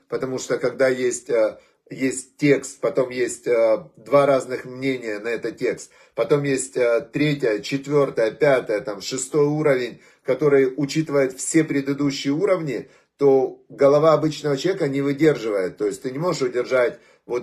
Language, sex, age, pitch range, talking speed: Russian, male, 30-49, 130-155 Hz, 135 wpm